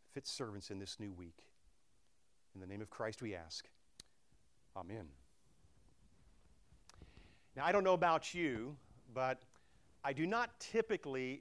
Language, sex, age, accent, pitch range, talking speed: English, male, 40-59, American, 105-180 Hz, 130 wpm